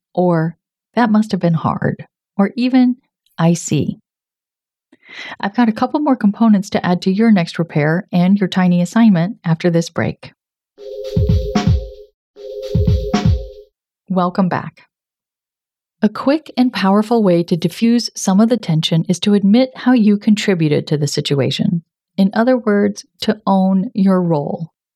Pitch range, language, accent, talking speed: 170-220 Hz, English, American, 140 wpm